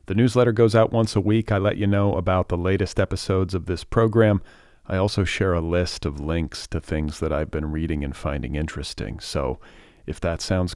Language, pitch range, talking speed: English, 80-100 Hz, 210 wpm